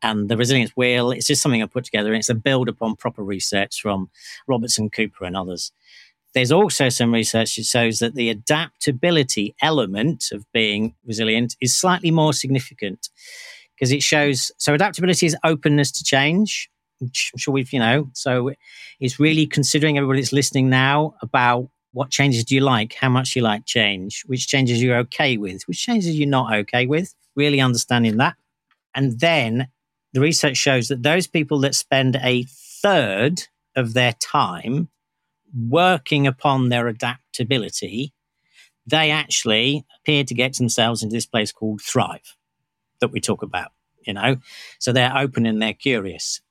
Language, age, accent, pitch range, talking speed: English, 40-59, British, 115-145 Hz, 165 wpm